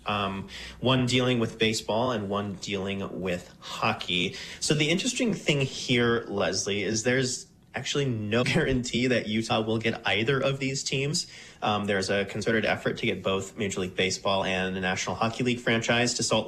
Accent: American